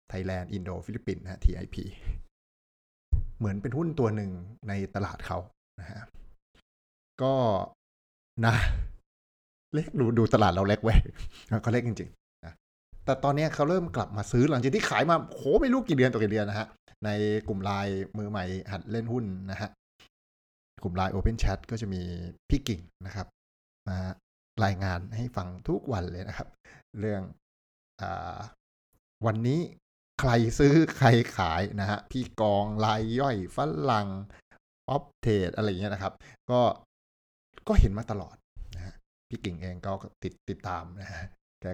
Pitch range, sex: 90-115 Hz, male